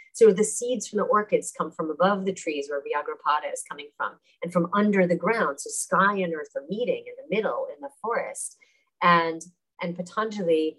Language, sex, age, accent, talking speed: English, female, 30-49, American, 200 wpm